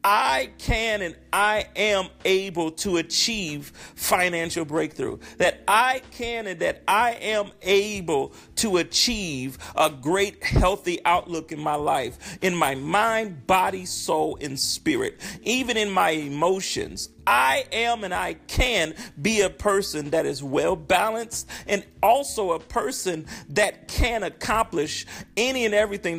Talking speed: 135 wpm